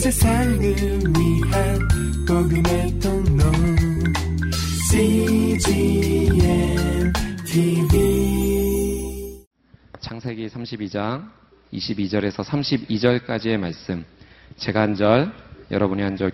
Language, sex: Korean, male